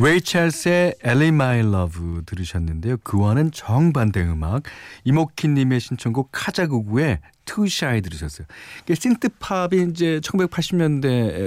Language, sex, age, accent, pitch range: Korean, male, 40-59, native, 90-150 Hz